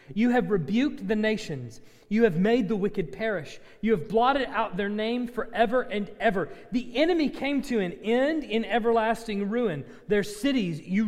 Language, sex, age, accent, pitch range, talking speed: English, male, 30-49, American, 195-245 Hz, 175 wpm